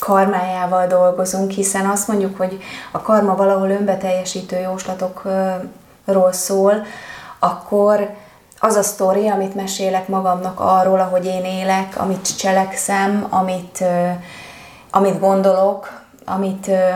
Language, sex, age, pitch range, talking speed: Hungarian, female, 20-39, 185-200 Hz, 105 wpm